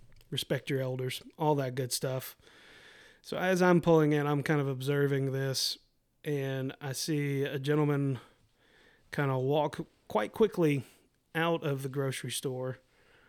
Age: 30-49